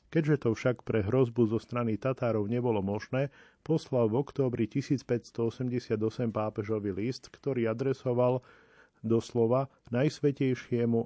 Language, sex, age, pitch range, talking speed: Slovak, male, 40-59, 110-130 Hz, 110 wpm